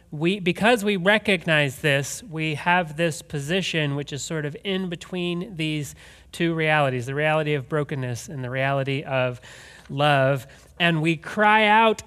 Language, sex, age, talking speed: English, male, 30-49, 155 wpm